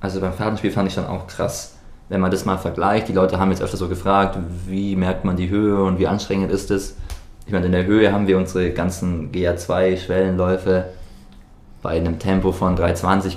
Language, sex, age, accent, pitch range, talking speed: German, male, 20-39, German, 90-100 Hz, 200 wpm